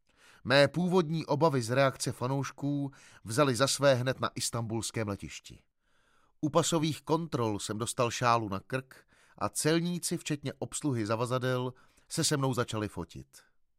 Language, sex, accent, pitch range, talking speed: Czech, male, native, 115-150 Hz, 135 wpm